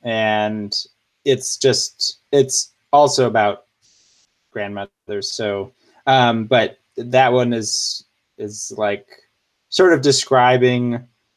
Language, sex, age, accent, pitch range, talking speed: English, male, 20-39, American, 105-125 Hz, 95 wpm